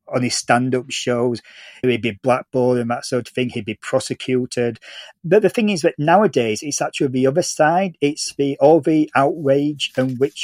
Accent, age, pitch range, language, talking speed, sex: British, 40-59, 125-155 Hz, English, 190 wpm, male